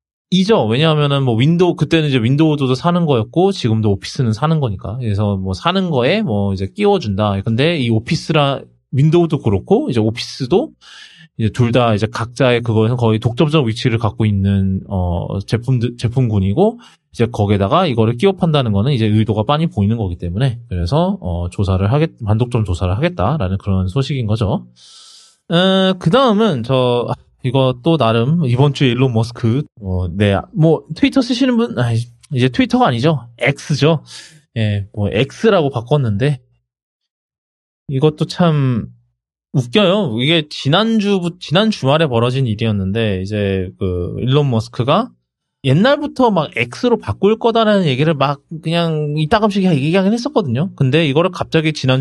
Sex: male